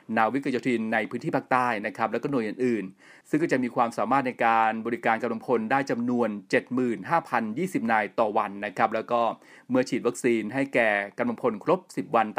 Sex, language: male, Thai